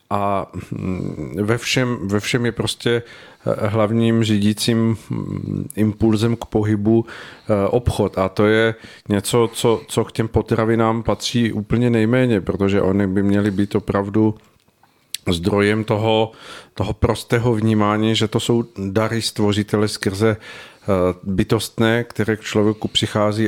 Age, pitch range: 40-59, 100-115 Hz